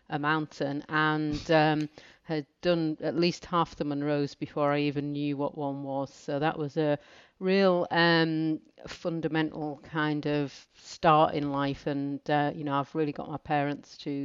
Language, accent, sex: English, British, female